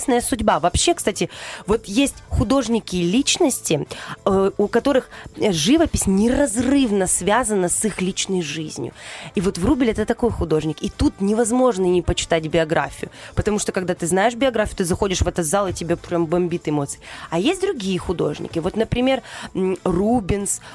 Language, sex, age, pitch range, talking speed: Russian, female, 20-39, 185-255 Hz, 150 wpm